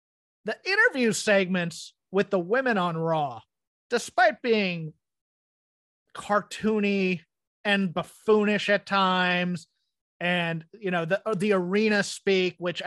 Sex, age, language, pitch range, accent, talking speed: male, 30-49, English, 175-220 Hz, American, 105 wpm